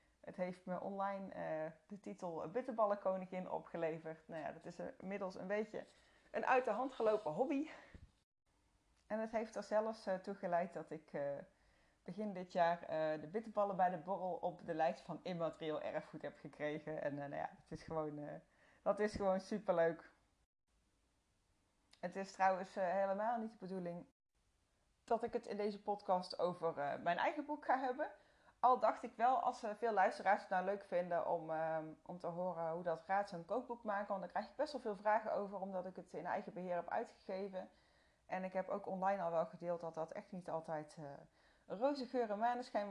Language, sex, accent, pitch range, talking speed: Dutch, female, Dutch, 165-205 Hz, 200 wpm